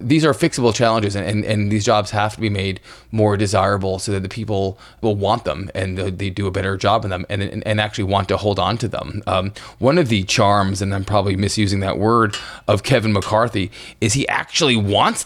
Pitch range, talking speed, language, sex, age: 100-115 Hz, 225 wpm, English, male, 20-39